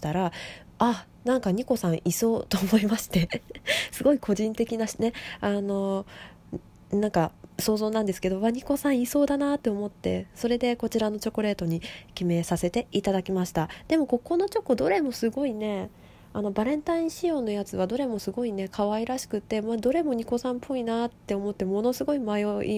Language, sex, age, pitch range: Japanese, female, 20-39, 175-240 Hz